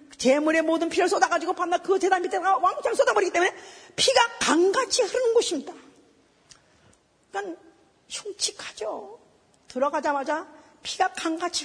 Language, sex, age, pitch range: Korean, female, 40-59, 280-415 Hz